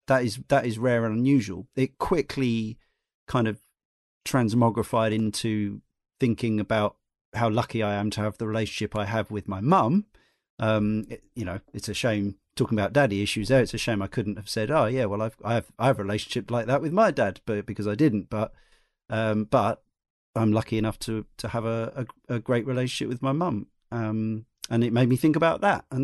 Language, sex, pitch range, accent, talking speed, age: English, male, 105-130 Hz, British, 205 wpm, 40-59